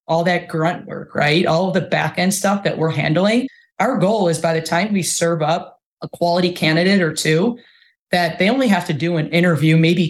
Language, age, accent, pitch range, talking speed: English, 20-39, American, 160-190 Hz, 215 wpm